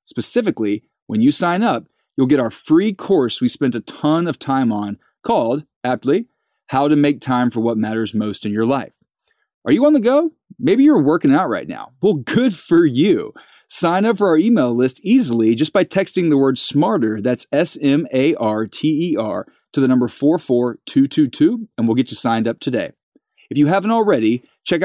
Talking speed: 185 wpm